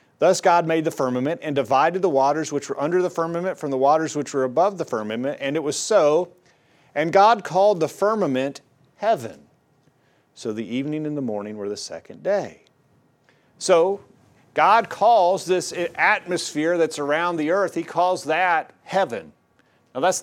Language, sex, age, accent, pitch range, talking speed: English, male, 40-59, American, 145-180 Hz, 170 wpm